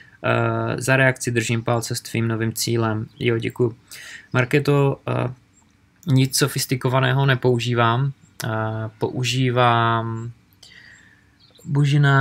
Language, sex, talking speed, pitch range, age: Czech, male, 95 wpm, 110-125 Hz, 20-39